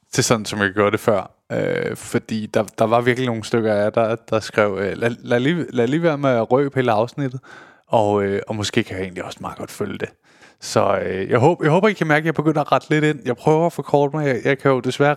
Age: 20-39